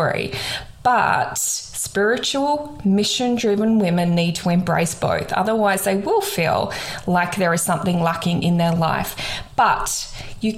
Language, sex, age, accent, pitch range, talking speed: English, female, 20-39, Australian, 170-195 Hz, 135 wpm